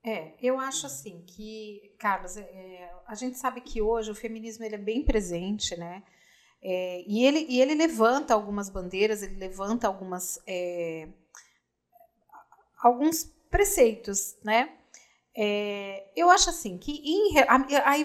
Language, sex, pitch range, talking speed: Portuguese, female, 195-270 Hz, 135 wpm